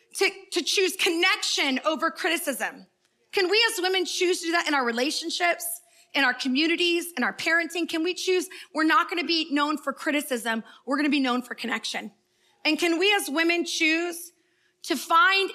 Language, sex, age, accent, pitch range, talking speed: English, female, 30-49, American, 250-330 Hz, 180 wpm